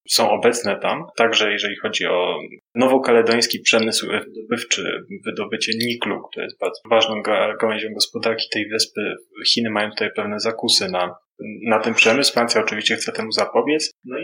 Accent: native